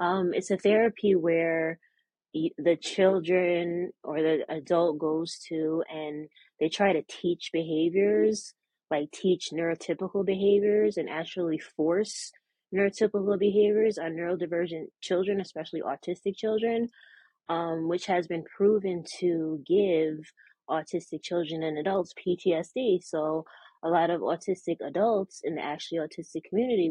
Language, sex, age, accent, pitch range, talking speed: English, female, 20-39, American, 155-185 Hz, 125 wpm